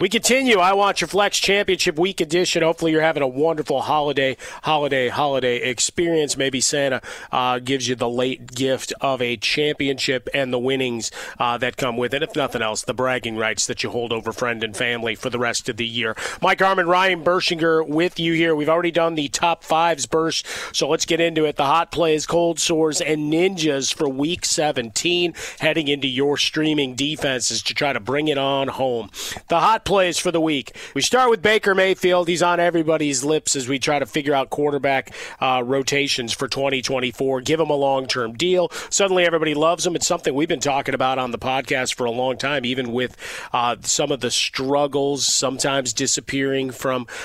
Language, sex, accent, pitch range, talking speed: English, male, American, 125-160 Hz, 195 wpm